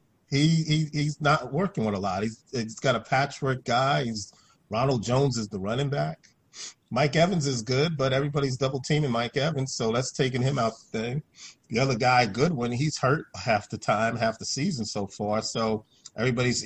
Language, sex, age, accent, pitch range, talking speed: English, male, 40-59, American, 115-140 Hz, 190 wpm